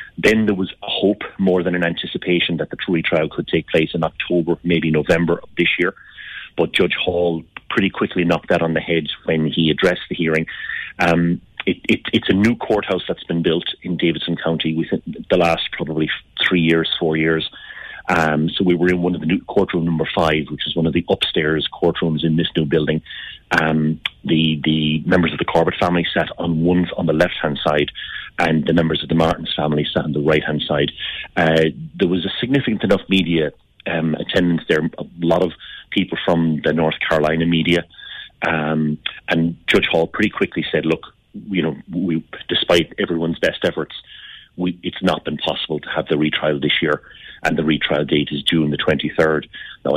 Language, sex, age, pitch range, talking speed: English, male, 30-49, 80-85 Hz, 195 wpm